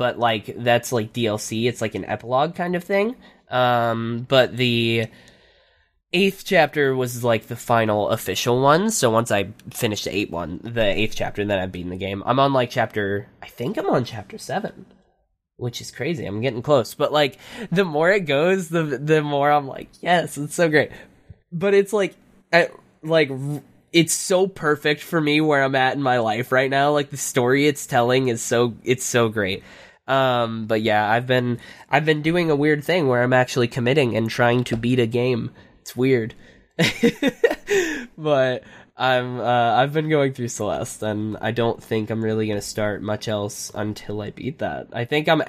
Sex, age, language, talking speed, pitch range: male, 10-29, English, 195 wpm, 115-150 Hz